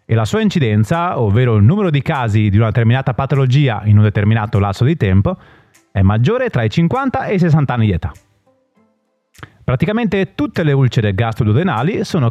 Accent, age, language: native, 30-49, Italian